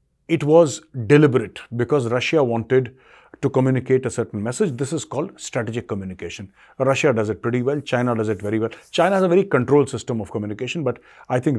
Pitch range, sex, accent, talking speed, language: 115-145 Hz, male, Indian, 190 wpm, English